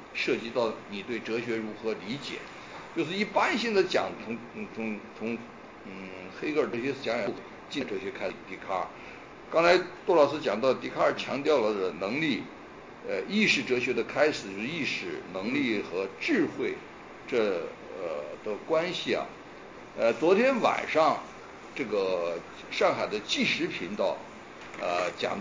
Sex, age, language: male, 60-79, Chinese